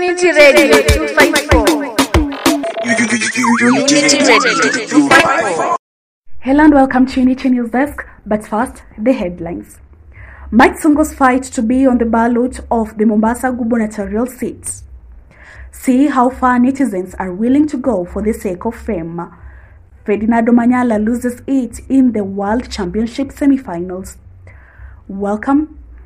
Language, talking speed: English, 110 wpm